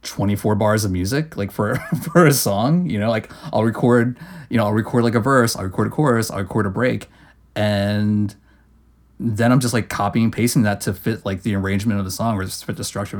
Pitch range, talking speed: 105-135 Hz, 230 wpm